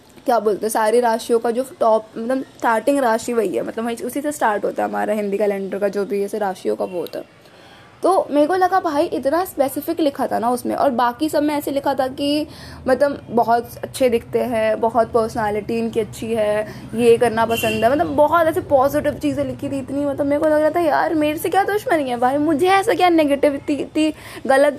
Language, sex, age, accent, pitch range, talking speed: Hindi, female, 20-39, native, 230-300 Hz, 220 wpm